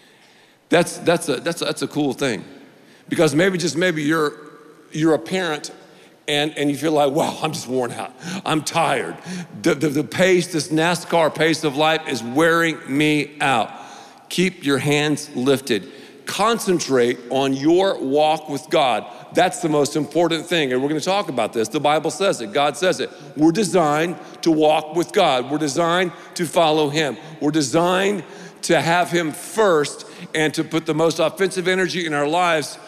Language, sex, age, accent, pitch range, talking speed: English, male, 50-69, American, 150-180 Hz, 180 wpm